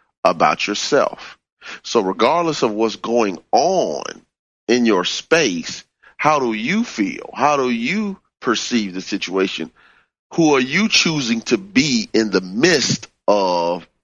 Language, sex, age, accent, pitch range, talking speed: English, male, 30-49, American, 95-125 Hz, 135 wpm